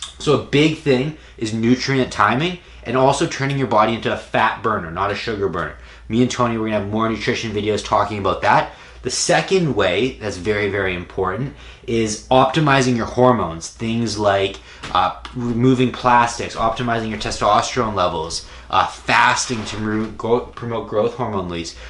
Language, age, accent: English, 20-39, American